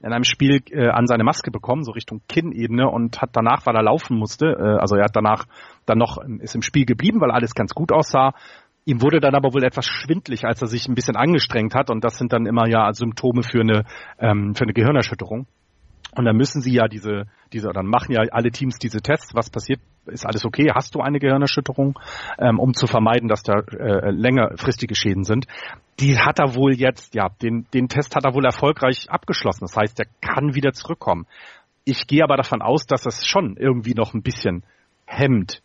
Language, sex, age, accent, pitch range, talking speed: German, male, 40-59, German, 110-140 Hz, 215 wpm